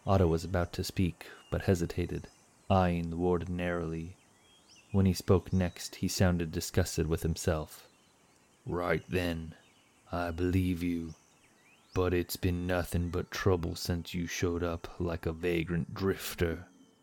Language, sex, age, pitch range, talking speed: English, male, 30-49, 85-120 Hz, 135 wpm